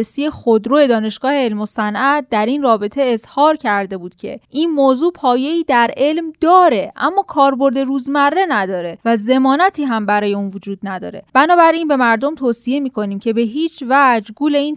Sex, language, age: female, Persian, 10-29